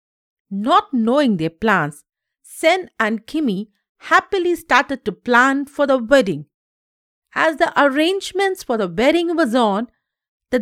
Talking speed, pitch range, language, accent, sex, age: 130 wpm, 195-290 Hz, English, Indian, female, 50-69